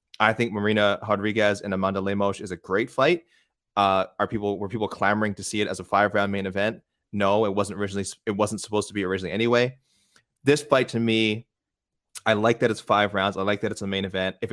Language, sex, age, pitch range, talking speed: English, male, 20-39, 100-120 Hz, 225 wpm